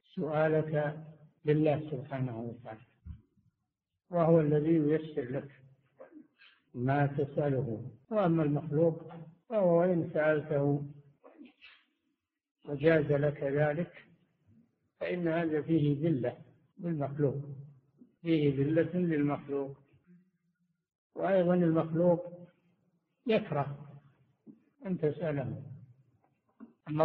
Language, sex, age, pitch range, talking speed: Arabic, male, 60-79, 140-175 Hz, 70 wpm